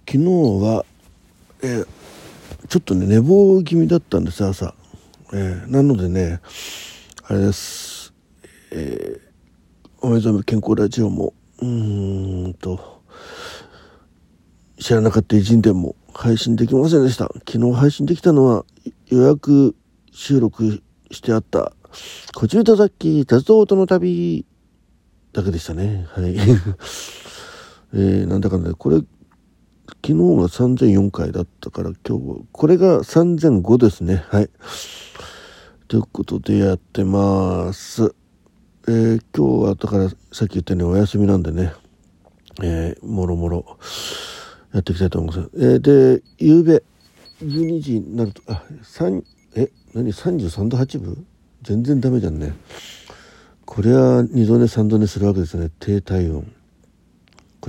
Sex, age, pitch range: male, 50-69, 90-125 Hz